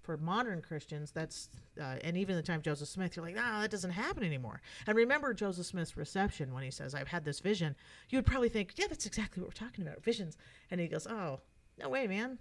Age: 40-59